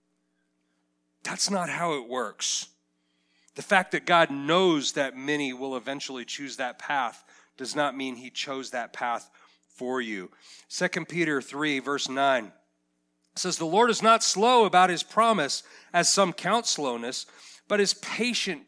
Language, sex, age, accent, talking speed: English, male, 40-59, American, 150 wpm